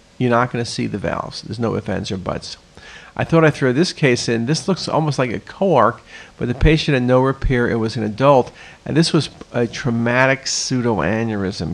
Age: 50-69